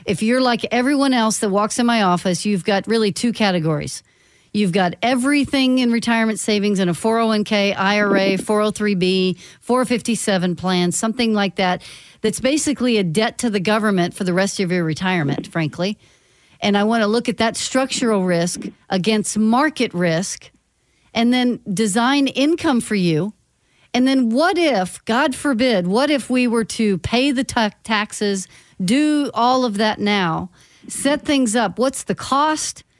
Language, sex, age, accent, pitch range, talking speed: English, female, 40-59, American, 200-255 Hz, 160 wpm